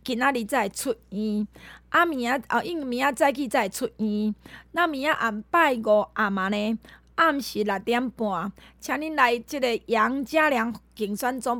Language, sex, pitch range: Chinese, female, 210-270 Hz